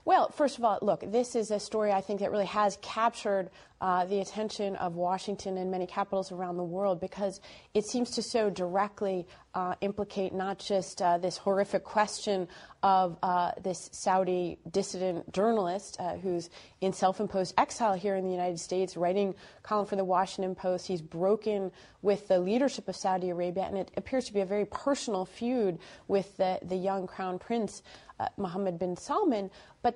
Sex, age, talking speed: female, 30-49, 180 wpm